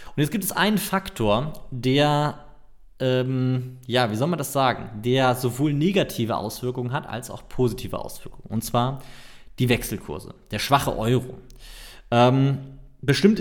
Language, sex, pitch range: German, male, 110-145 Hz